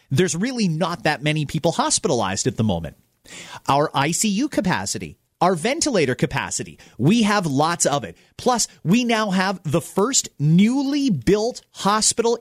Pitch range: 150-210 Hz